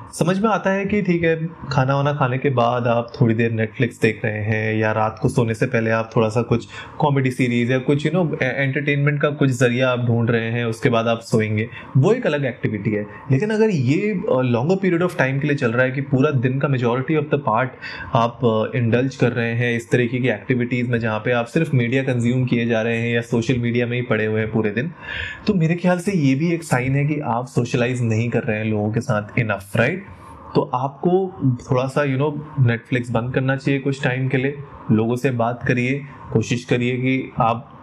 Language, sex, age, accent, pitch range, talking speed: Hindi, male, 20-39, native, 115-145 Hz, 230 wpm